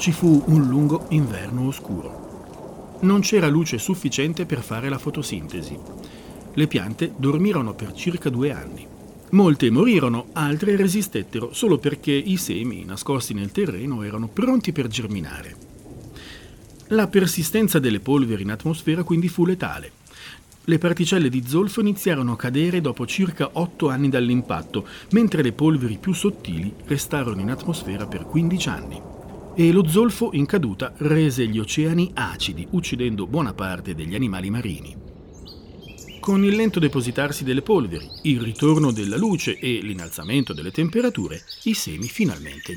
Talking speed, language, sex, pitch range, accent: 140 wpm, Italian, male, 115-175 Hz, native